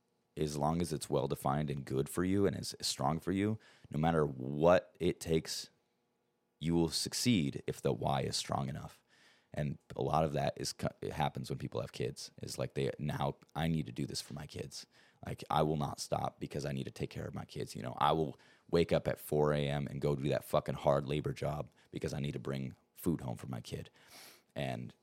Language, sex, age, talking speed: English, male, 30-49, 225 wpm